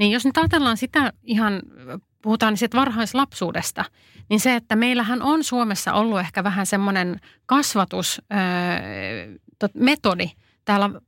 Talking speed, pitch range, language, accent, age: 115 wpm, 185-235 Hz, Finnish, native, 30-49